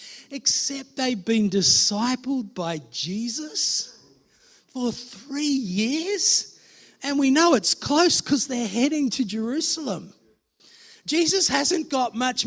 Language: English